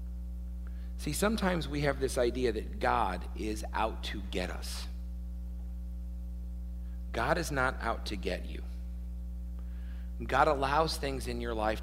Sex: male